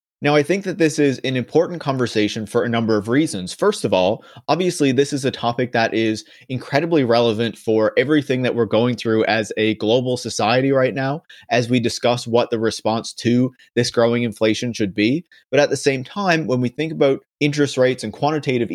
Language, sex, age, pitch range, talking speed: English, male, 30-49, 115-140 Hz, 200 wpm